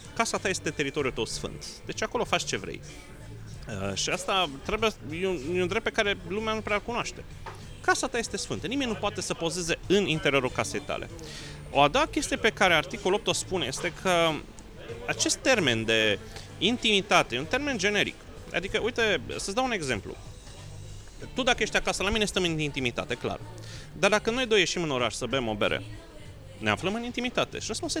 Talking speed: 200 wpm